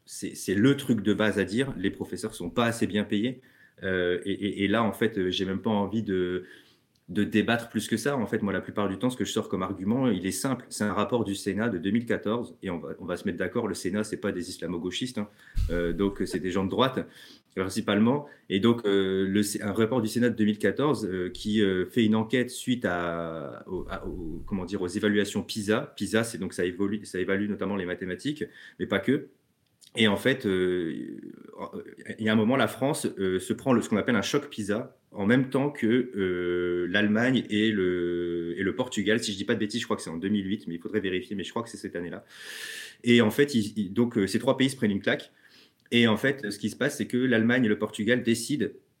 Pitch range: 95-115 Hz